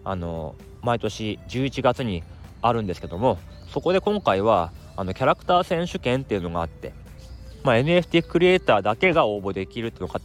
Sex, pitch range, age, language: male, 95-145 Hz, 20-39, Japanese